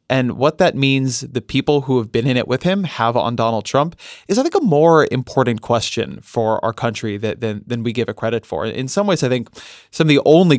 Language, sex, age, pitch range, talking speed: English, male, 20-39, 115-135 Hz, 245 wpm